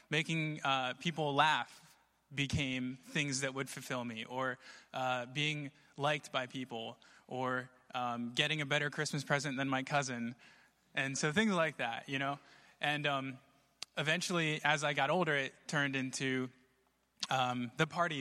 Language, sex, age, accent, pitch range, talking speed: English, male, 20-39, American, 120-140 Hz, 150 wpm